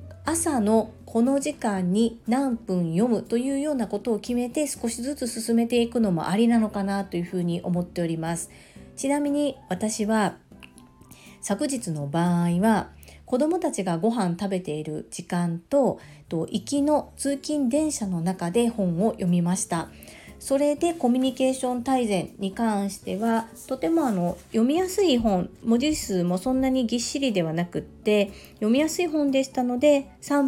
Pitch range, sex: 180-260 Hz, female